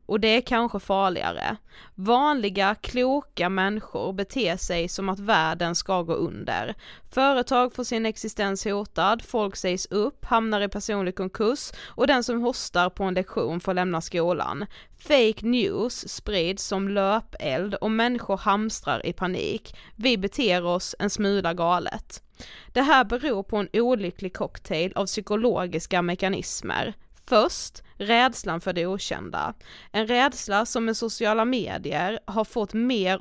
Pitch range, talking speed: 185-225 Hz, 140 wpm